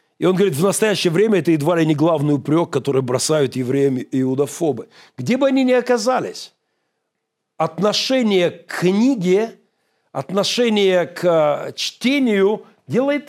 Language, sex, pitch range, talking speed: Russian, male, 160-220 Hz, 130 wpm